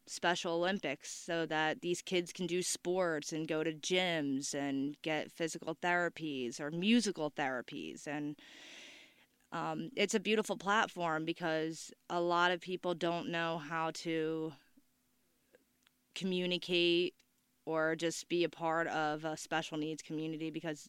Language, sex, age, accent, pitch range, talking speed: English, female, 20-39, American, 160-185 Hz, 135 wpm